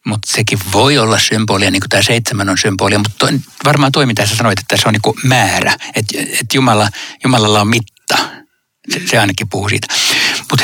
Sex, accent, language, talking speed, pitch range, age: male, native, Finnish, 185 wpm, 105-135 Hz, 60-79